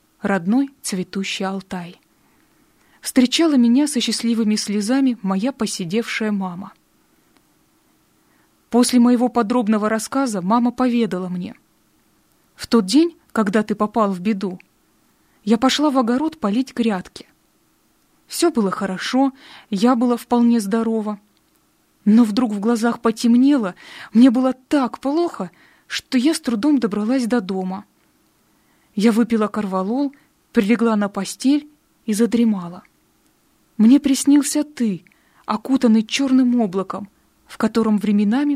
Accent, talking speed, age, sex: native, 110 wpm, 20-39, female